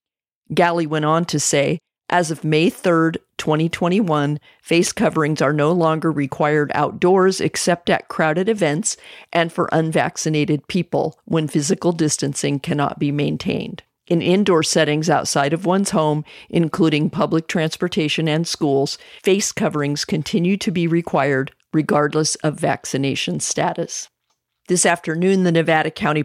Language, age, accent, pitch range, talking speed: English, 50-69, American, 150-180 Hz, 135 wpm